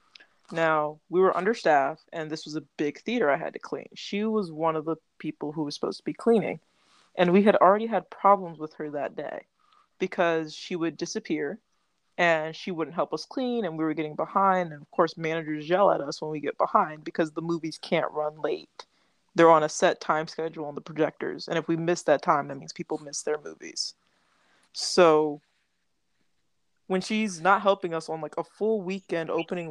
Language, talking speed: English, 205 wpm